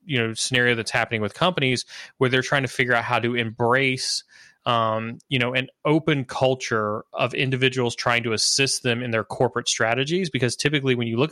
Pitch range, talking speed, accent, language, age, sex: 110-130 Hz, 195 wpm, American, English, 20-39, male